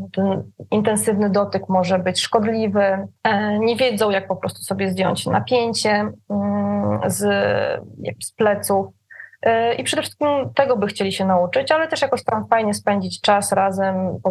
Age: 20-39